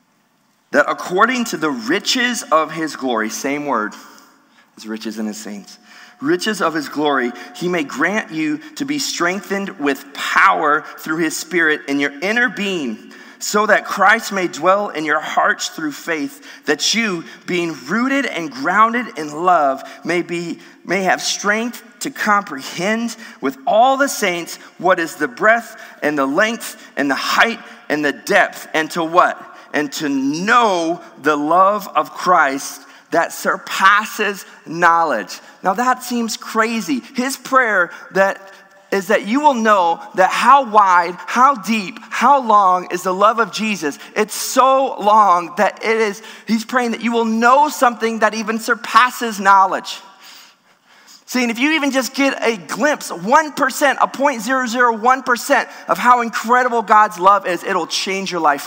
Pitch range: 180-250 Hz